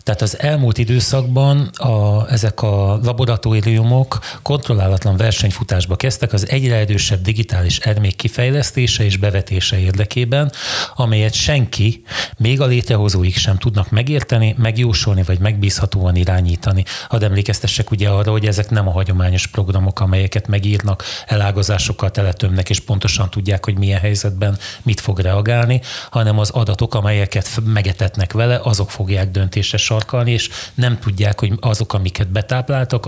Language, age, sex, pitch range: Hungarian, 30-49, male, 100-115 Hz